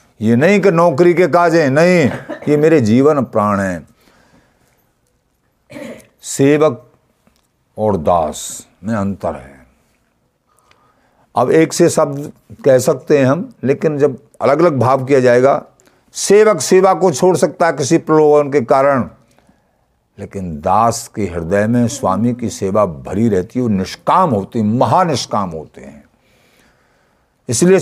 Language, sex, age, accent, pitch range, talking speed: Hindi, male, 60-79, native, 110-165 Hz, 135 wpm